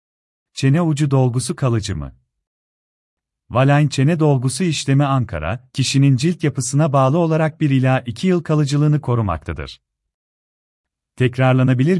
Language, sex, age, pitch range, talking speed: Turkish, male, 40-59, 110-150 Hz, 110 wpm